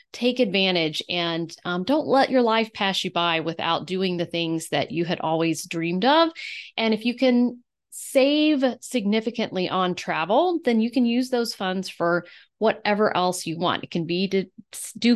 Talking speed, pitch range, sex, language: 180 wpm, 180-240 Hz, female, English